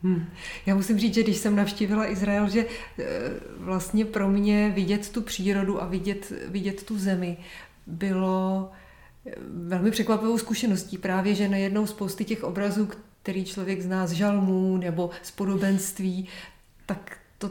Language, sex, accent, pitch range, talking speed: Czech, female, native, 185-210 Hz, 140 wpm